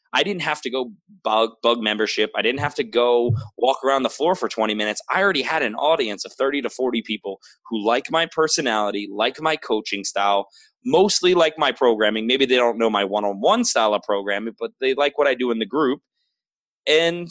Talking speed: 210 wpm